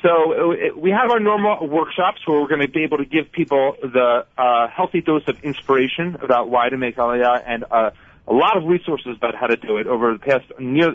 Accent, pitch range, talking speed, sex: American, 120-155 Hz, 225 wpm, male